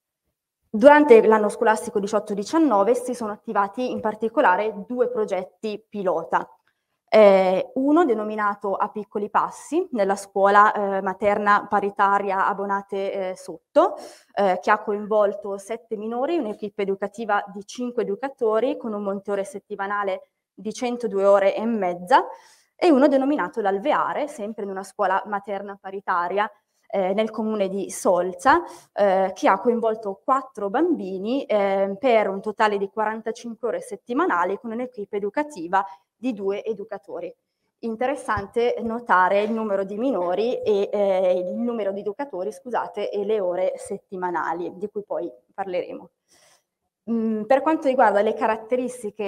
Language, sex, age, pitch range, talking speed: Italian, female, 20-39, 195-235 Hz, 130 wpm